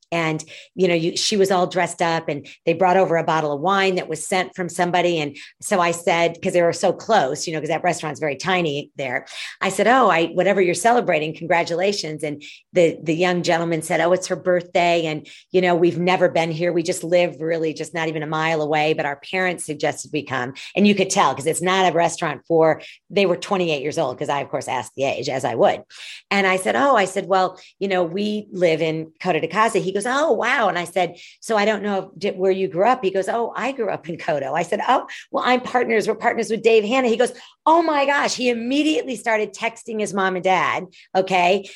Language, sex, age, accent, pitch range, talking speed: English, female, 40-59, American, 165-215 Hz, 245 wpm